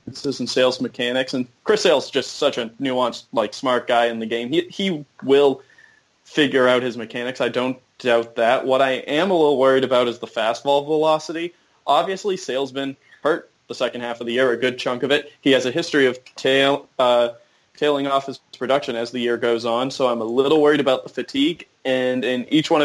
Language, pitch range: English, 125-140 Hz